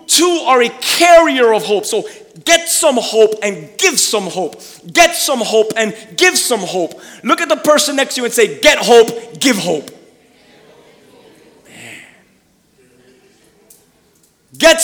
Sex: male